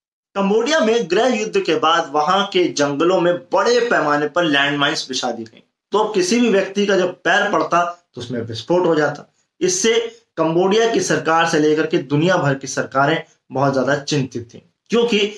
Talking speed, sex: 165 wpm, male